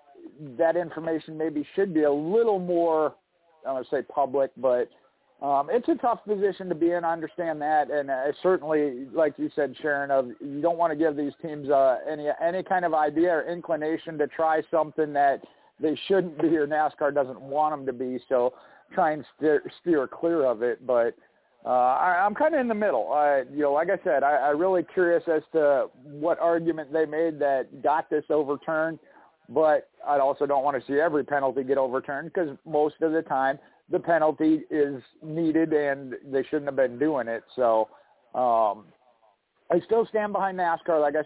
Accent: American